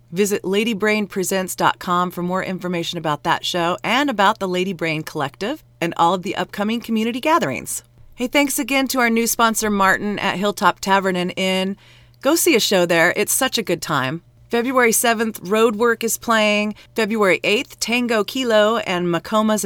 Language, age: English, 40-59